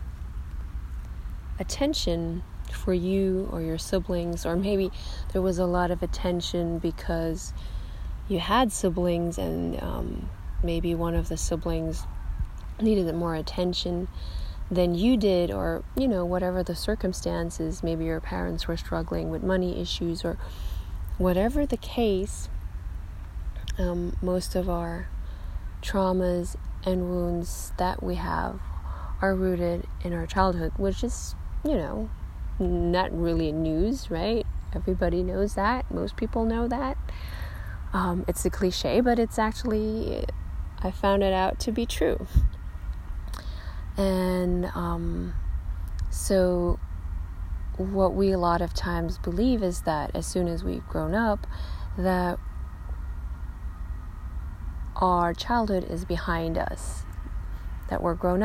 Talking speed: 125 wpm